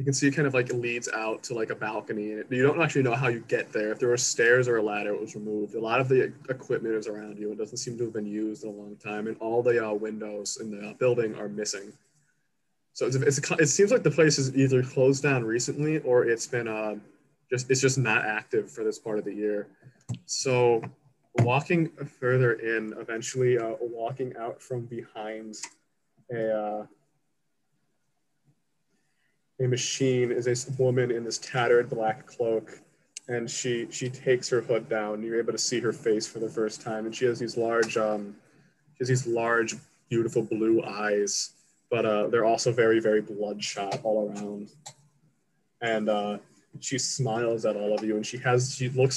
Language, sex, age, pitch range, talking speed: English, male, 20-39, 110-130 Hz, 200 wpm